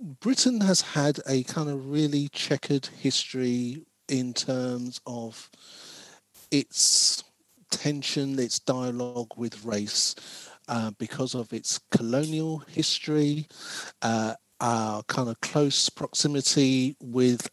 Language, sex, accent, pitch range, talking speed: English, male, British, 120-155 Hz, 105 wpm